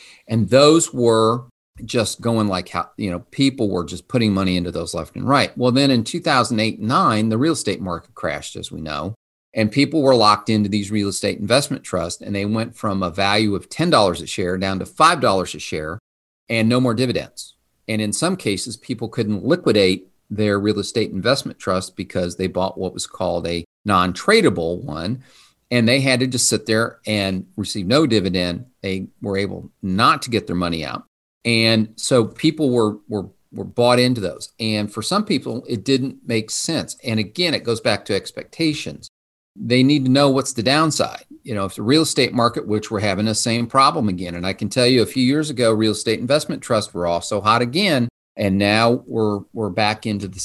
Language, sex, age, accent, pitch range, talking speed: English, male, 40-59, American, 95-120 Hz, 205 wpm